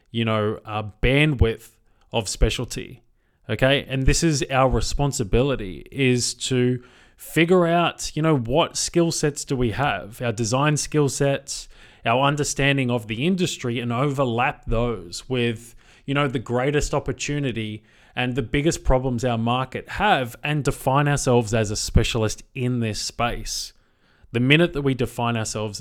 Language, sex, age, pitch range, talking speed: English, male, 20-39, 110-135 Hz, 150 wpm